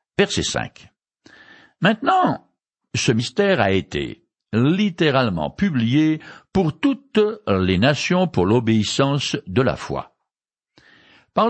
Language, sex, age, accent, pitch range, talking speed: French, male, 60-79, French, 110-180 Hz, 100 wpm